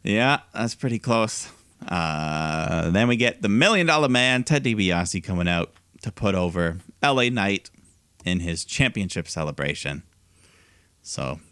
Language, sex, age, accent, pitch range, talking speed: English, male, 30-49, American, 90-115 Hz, 135 wpm